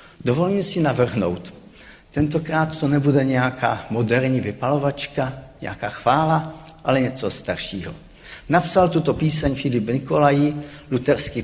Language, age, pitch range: Czech, 50-69, 115-150 Hz